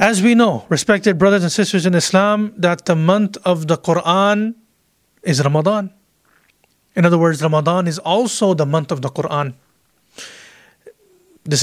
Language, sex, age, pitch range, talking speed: English, male, 30-49, 160-205 Hz, 150 wpm